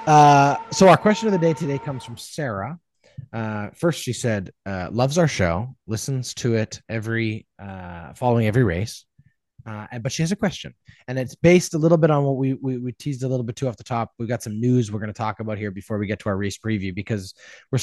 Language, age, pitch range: English, 20-39, 115-150 Hz